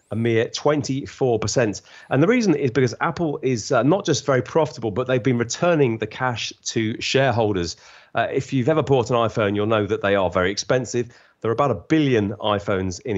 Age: 30-49